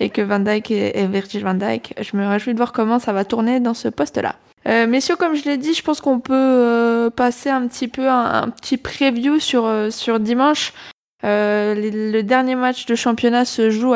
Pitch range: 210-255 Hz